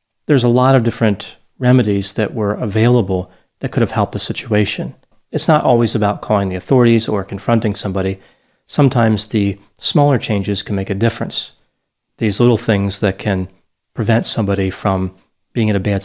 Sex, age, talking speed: male, 40-59, 170 wpm